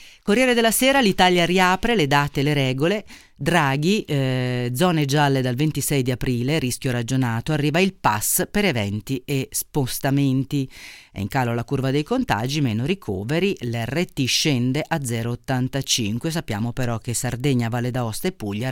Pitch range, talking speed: 120-150 Hz, 155 wpm